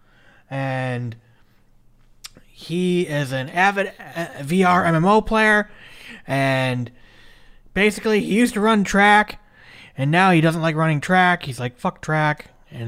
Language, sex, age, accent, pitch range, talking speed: English, male, 30-49, American, 125-175 Hz, 125 wpm